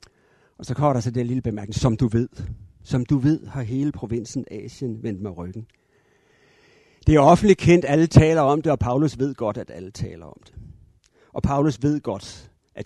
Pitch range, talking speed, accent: 105-145 Hz, 200 wpm, native